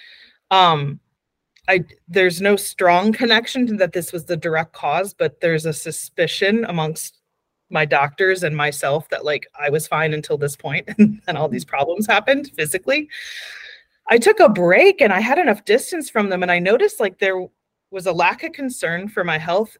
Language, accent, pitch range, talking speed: English, American, 175-230 Hz, 180 wpm